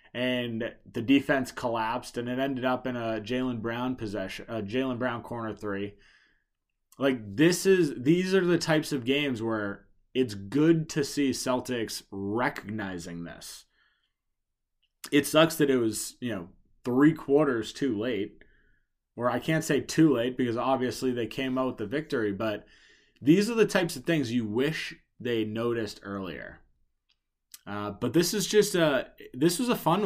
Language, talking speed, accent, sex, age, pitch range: English, 165 wpm, American, male, 20-39, 110-140 Hz